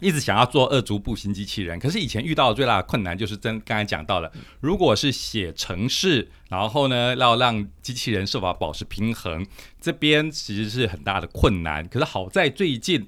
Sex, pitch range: male, 95-125 Hz